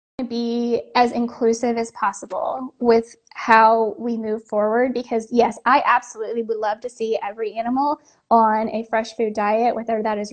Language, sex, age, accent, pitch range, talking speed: English, female, 10-29, American, 215-250 Hz, 165 wpm